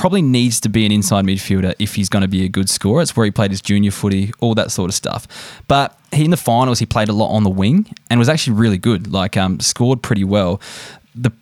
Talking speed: 265 wpm